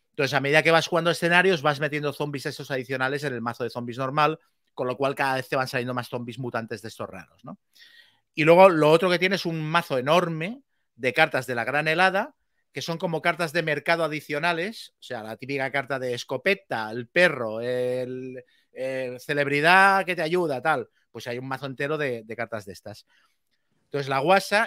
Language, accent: Spanish, Spanish